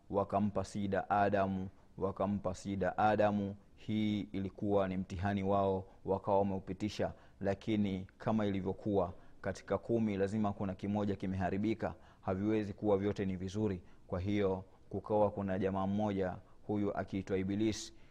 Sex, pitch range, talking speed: male, 95-100 Hz, 120 wpm